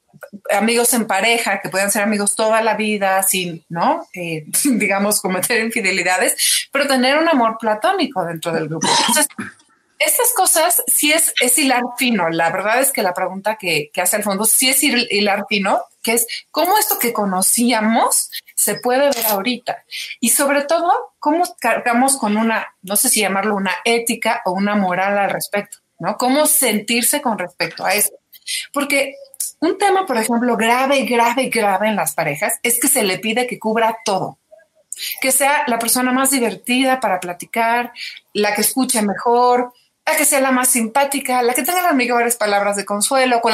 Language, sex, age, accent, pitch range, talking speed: Spanish, female, 30-49, Mexican, 205-270 Hz, 180 wpm